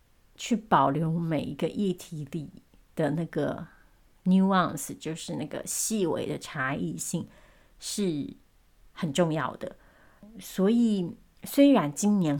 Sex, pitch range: female, 160-205 Hz